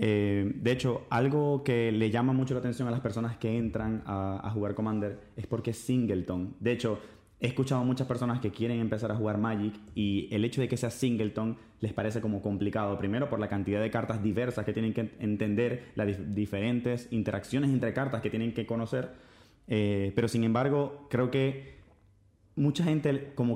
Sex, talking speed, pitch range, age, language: male, 195 wpm, 110-130 Hz, 20-39, Spanish